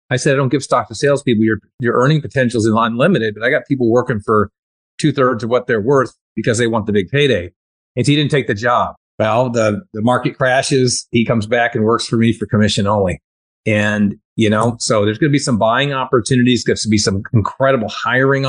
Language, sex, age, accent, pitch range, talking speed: English, male, 40-59, American, 115-145 Hz, 235 wpm